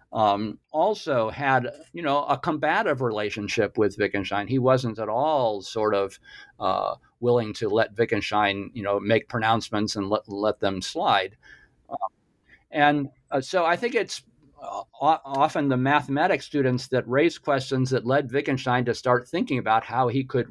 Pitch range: 105-135 Hz